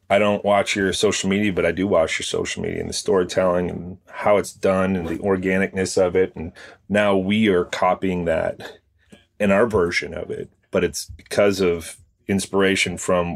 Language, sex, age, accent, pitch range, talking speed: English, male, 30-49, American, 90-105 Hz, 190 wpm